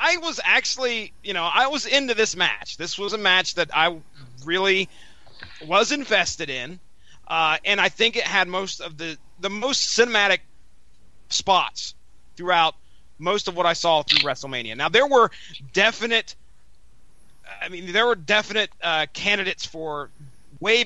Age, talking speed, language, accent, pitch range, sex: 30-49, 155 wpm, English, American, 155-210 Hz, male